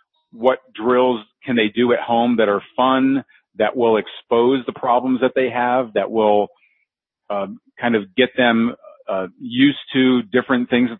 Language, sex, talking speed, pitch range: English, male, 170 wpm, 115-145 Hz